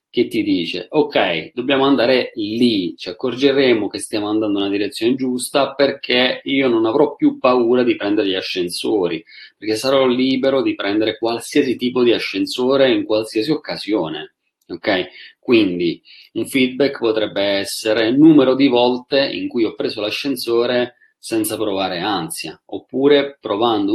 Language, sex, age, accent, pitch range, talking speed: Italian, male, 30-49, native, 105-145 Hz, 145 wpm